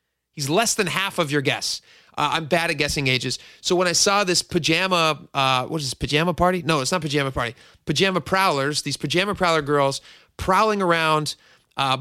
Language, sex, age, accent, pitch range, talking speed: English, male, 30-49, American, 140-175 Hz, 195 wpm